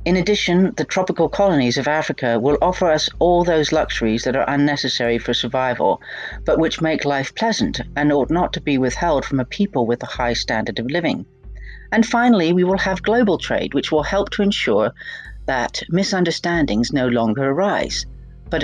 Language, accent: English, British